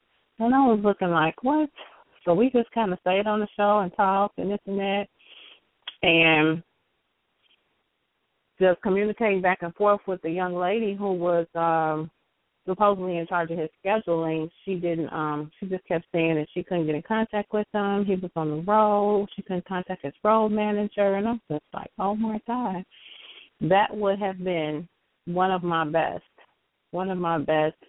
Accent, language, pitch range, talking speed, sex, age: American, English, 165-205 Hz, 185 wpm, female, 30-49